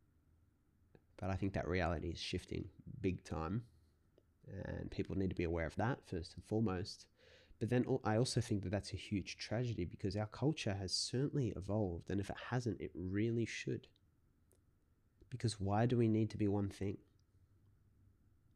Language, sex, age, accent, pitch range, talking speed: English, male, 20-39, Australian, 95-110 Hz, 170 wpm